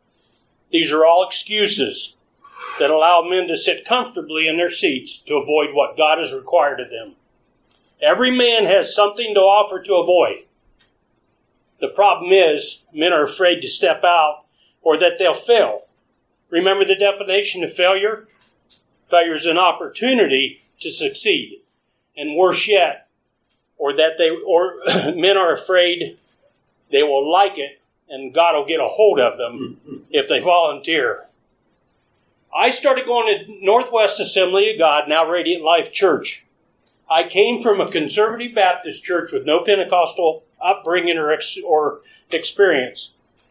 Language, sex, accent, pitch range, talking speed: English, male, American, 165-230 Hz, 140 wpm